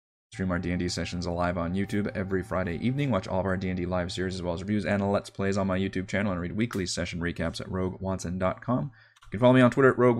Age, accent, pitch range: 20-39, American, 95-115 Hz